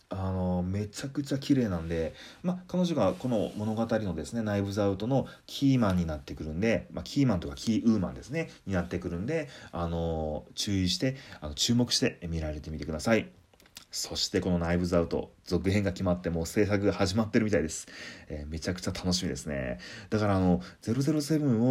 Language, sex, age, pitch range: Japanese, male, 30-49, 85-120 Hz